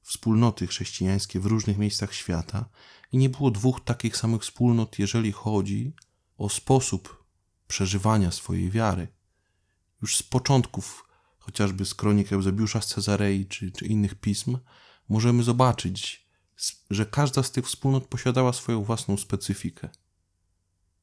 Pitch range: 95-120 Hz